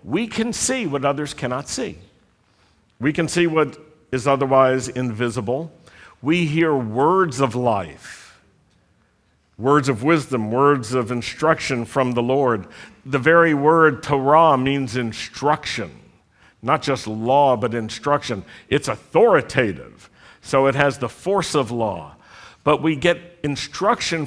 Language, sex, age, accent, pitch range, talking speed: English, male, 60-79, American, 120-160 Hz, 130 wpm